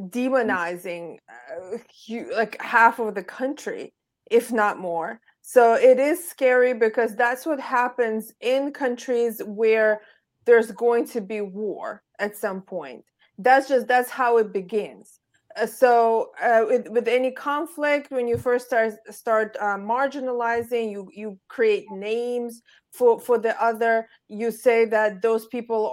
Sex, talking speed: female, 145 wpm